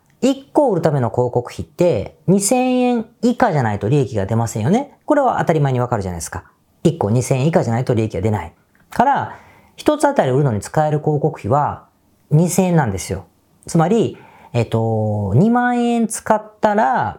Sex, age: female, 40-59